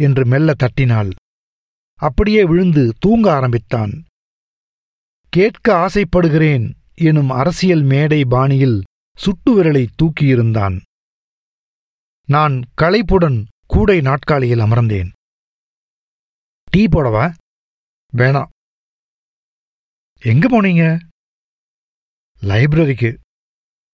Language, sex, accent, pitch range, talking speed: Tamil, male, native, 125-170 Hz, 70 wpm